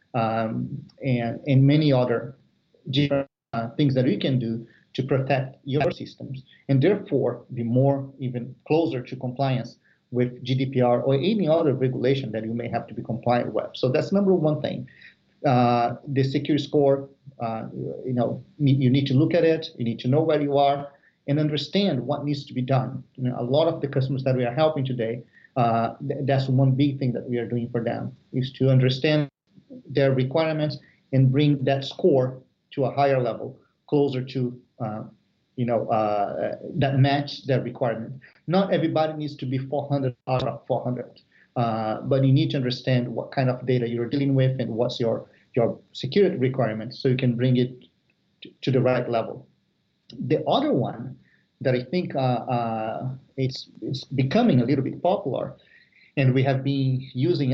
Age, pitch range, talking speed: 40-59, 125-140 Hz, 180 wpm